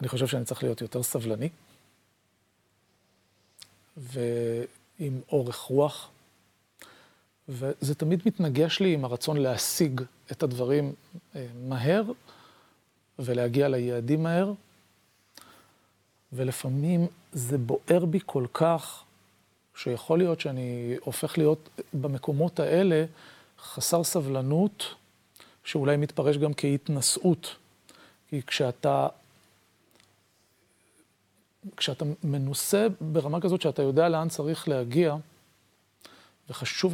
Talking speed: 90 wpm